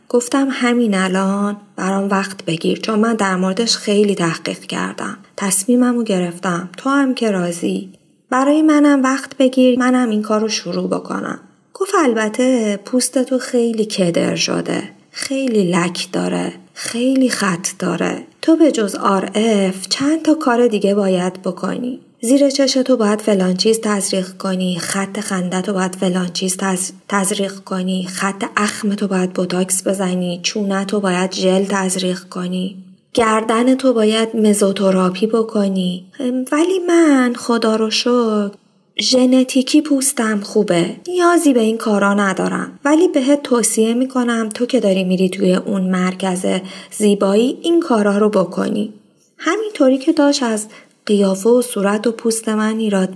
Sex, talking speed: female, 140 wpm